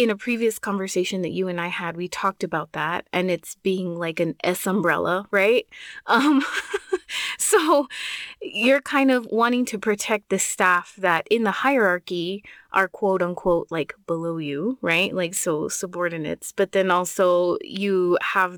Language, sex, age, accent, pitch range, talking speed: English, female, 20-39, American, 175-220 Hz, 160 wpm